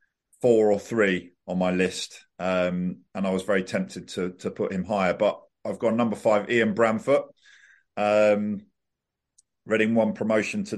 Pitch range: 95-110 Hz